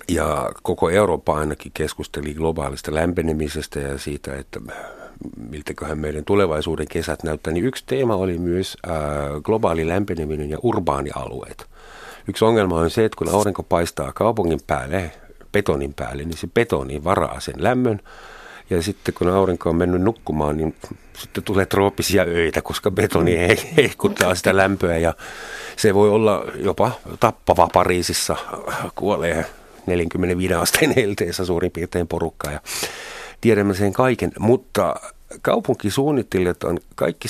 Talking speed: 135 wpm